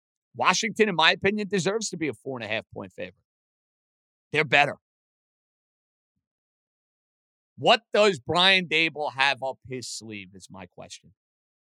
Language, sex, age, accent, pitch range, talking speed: English, male, 50-69, American, 150-220 Hz, 125 wpm